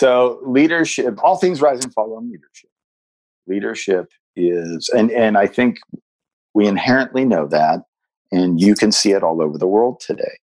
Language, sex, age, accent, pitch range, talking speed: English, male, 50-69, American, 85-125 Hz, 165 wpm